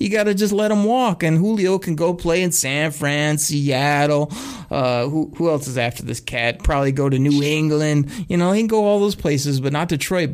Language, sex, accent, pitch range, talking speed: English, male, American, 145-205 Hz, 230 wpm